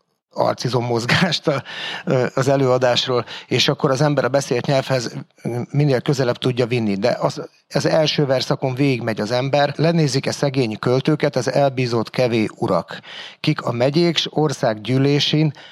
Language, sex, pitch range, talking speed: Hungarian, male, 120-150 Hz, 135 wpm